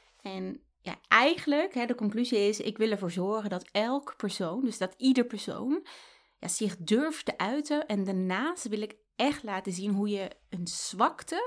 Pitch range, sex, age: 190-250 Hz, female, 20-39